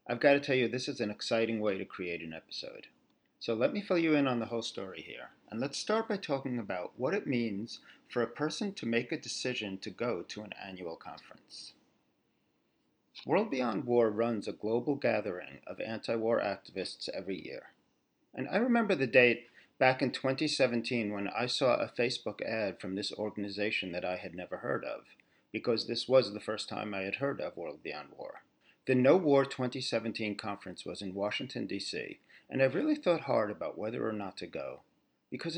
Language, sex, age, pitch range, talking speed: English, male, 40-59, 105-140 Hz, 195 wpm